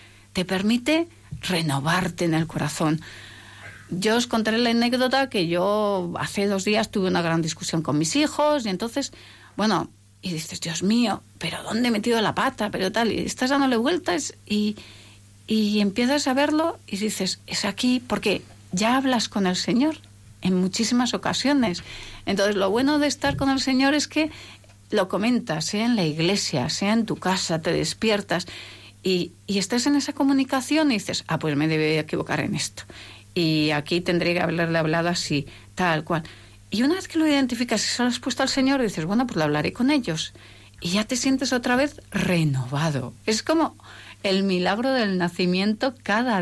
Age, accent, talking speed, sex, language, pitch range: 40-59, Spanish, 180 wpm, female, Spanish, 160-250 Hz